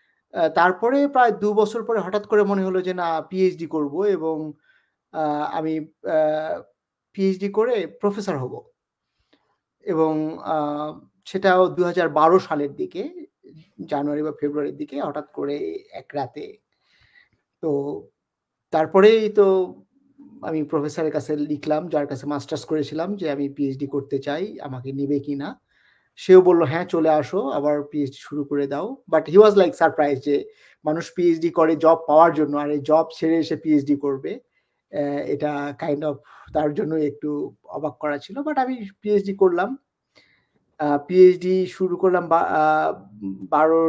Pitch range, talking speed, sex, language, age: 150-190 Hz, 120 wpm, male, Bengali, 50-69